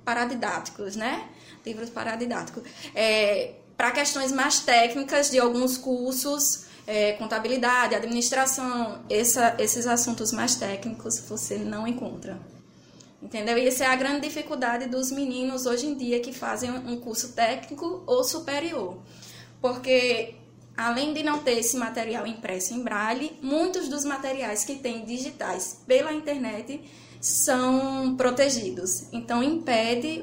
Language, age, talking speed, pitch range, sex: Portuguese, 10-29, 120 wpm, 230-275 Hz, female